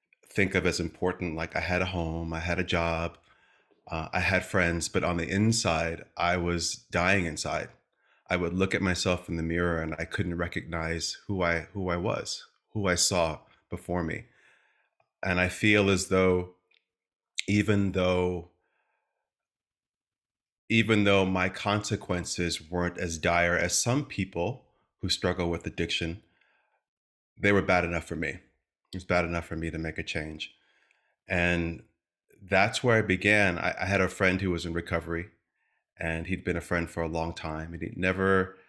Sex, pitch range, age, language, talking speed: male, 85-95 Hz, 30-49, English, 170 wpm